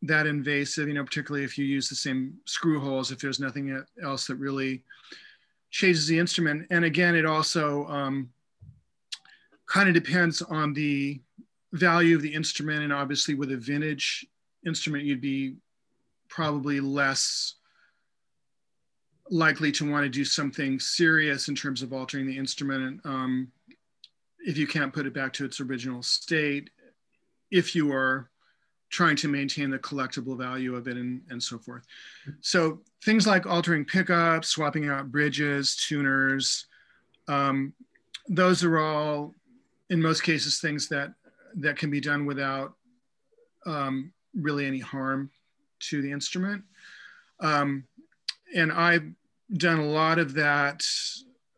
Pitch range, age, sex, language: 135-165 Hz, 40-59, male, English